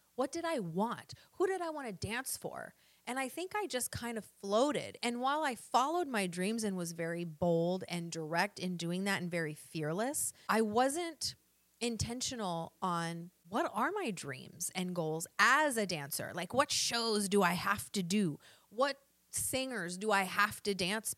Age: 30-49